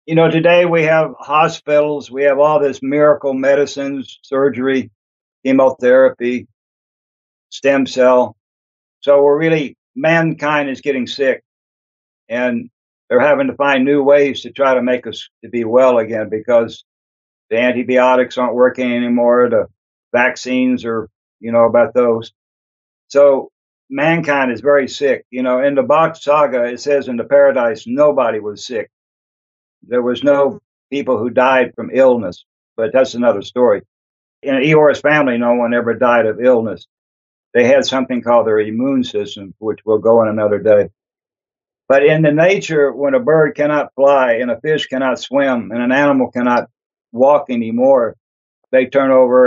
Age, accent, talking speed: 60-79, American, 155 wpm